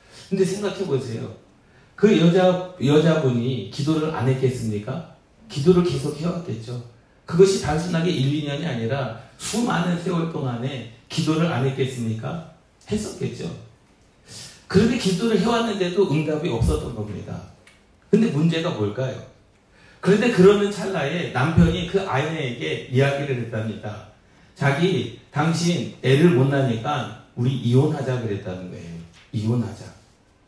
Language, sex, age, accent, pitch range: Korean, male, 40-59, native, 120-185 Hz